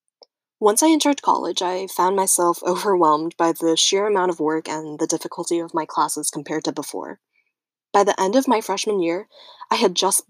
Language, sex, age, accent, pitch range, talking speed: English, female, 10-29, American, 170-245 Hz, 190 wpm